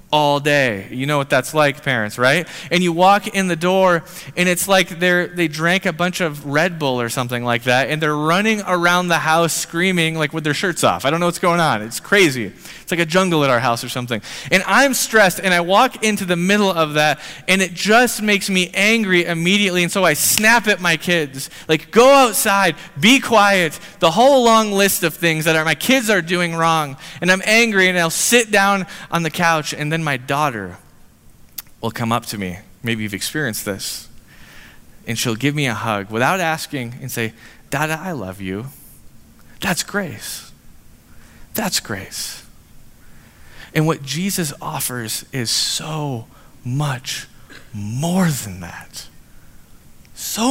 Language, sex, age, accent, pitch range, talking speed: English, male, 20-39, American, 135-190 Hz, 185 wpm